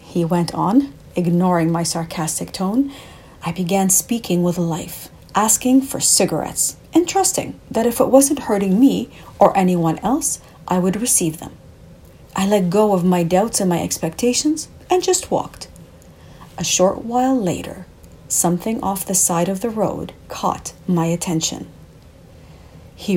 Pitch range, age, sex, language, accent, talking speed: 175-260 Hz, 40-59, female, English, Canadian, 150 wpm